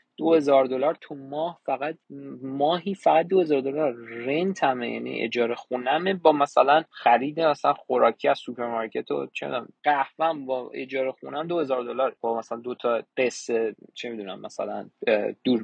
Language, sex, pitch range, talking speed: Persian, male, 120-155 Hz, 145 wpm